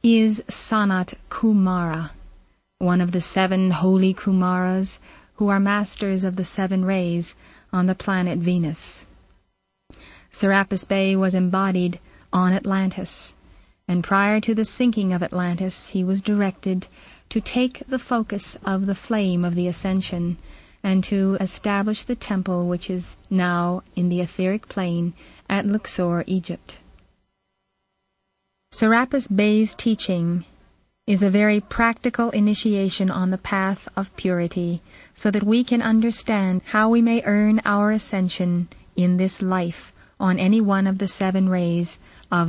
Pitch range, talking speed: 180-210 Hz, 135 wpm